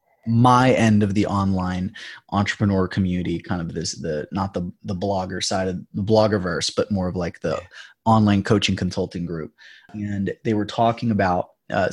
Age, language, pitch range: 20-39, English, 95-110 Hz